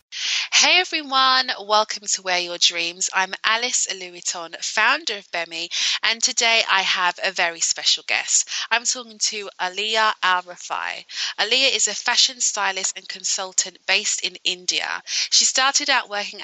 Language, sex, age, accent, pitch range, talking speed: English, female, 20-39, British, 185-225 Hz, 145 wpm